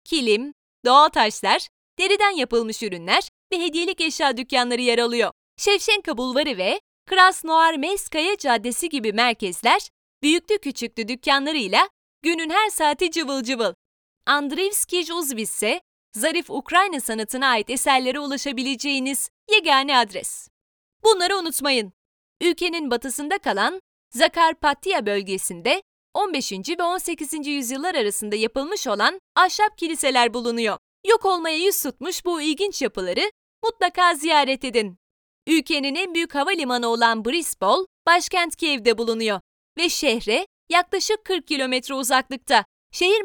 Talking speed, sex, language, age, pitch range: 110 wpm, female, Turkish, 30-49, 245-365 Hz